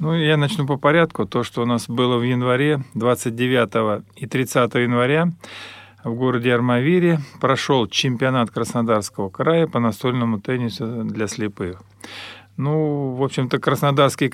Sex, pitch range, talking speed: male, 115-135 Hz, 135 wpm